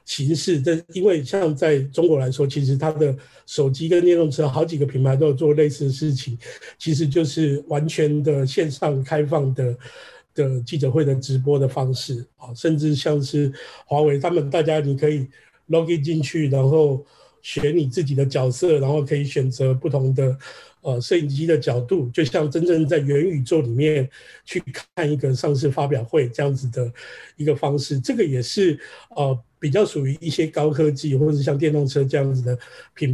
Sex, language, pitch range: male, Chinese, 135-155 Hz